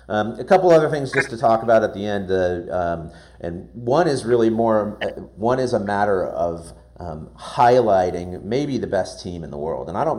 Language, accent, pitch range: English, American, 80-100 Hz